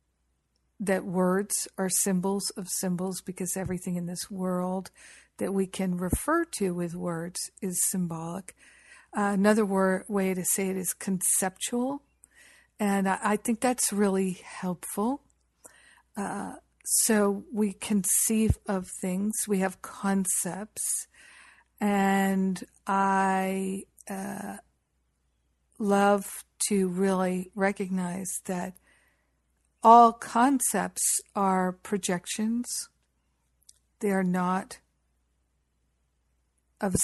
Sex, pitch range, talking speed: female, 180-205 Hz, 95 wpm